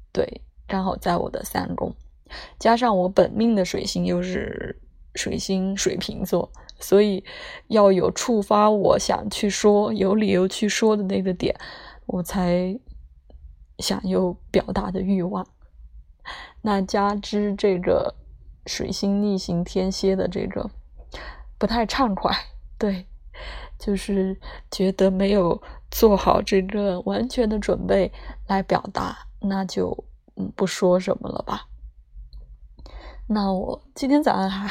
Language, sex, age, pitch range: Chinese, female, 20-39, 180-210 Hz